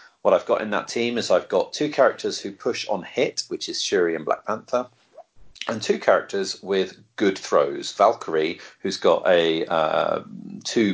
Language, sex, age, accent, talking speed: English, male, 40-59, British, 180 wpm